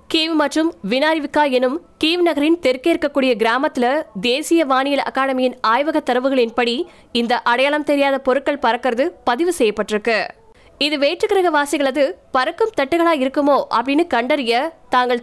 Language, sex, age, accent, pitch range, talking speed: Tamil, female, 20-39, native, 240-300 Hz, 105 wpm